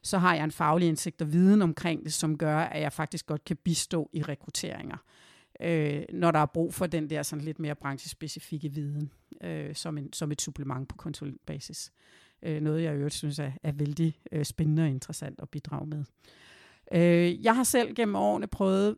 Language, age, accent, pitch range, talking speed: Danish, 50-69, native, 155-200 Hz, 200 wpm